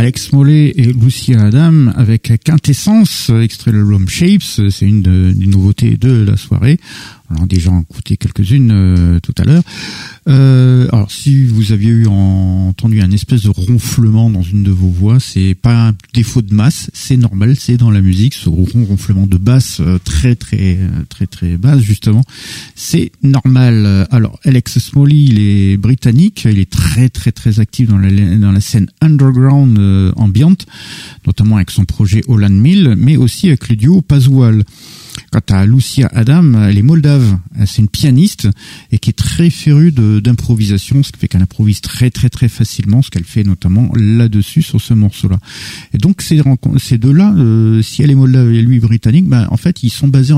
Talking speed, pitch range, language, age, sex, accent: 185 wpm, 100-130 Hz, French, 50-69, male, French